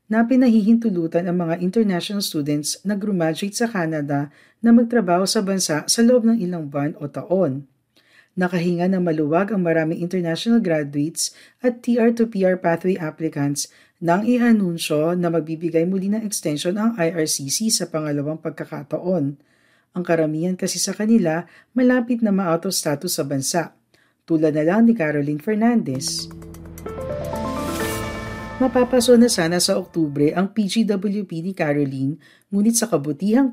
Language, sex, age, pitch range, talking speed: Filipino, female, 50-69, 150-210 Hz, 135 wpm